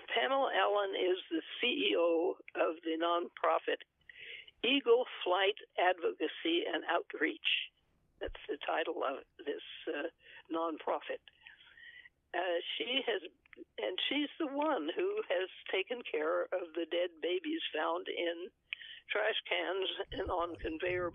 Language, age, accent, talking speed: English, 60-79, American, 120 wpm